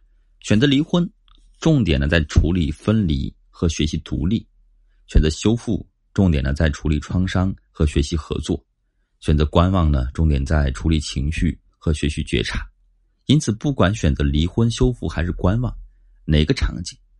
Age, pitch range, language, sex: 30-49, 75-105 Hz, Chinese, male